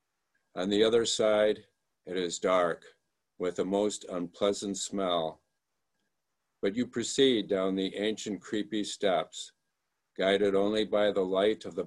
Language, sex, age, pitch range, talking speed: English, male, 50-69, 100-135 Hz, 135 wpm